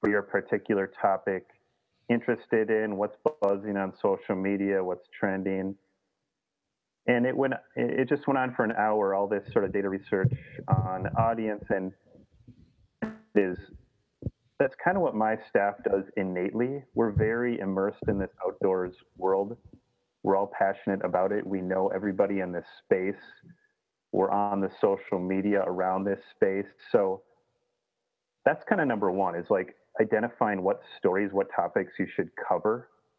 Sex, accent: male, American